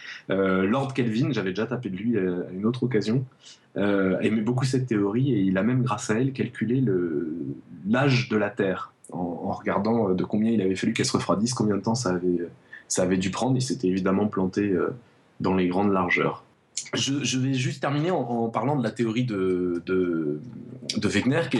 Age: 20-39